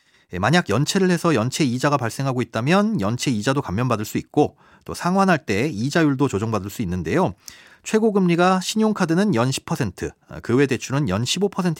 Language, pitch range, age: Korean, 115-180 Hz, 30-49